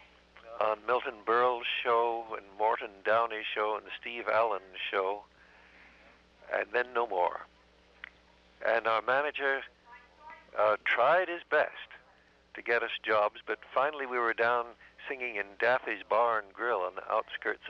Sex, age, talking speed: male, 60-79, 135 wpm